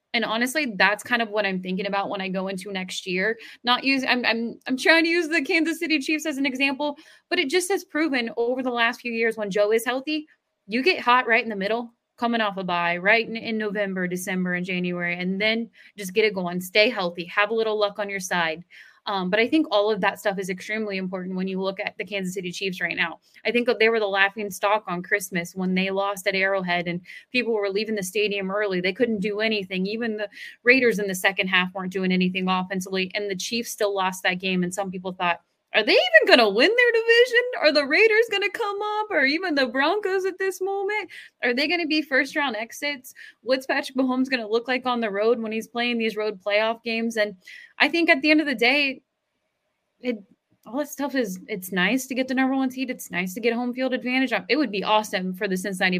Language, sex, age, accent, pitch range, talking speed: English, female, 20-39, American, 190-265 Hz, 245 wpm